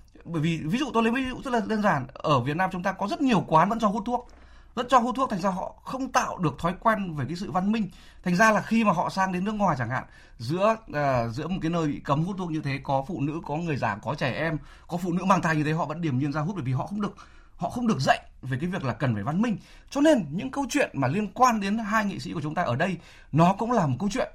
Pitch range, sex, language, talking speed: 150-220 Hz, male, Vietnamese, 315 wpm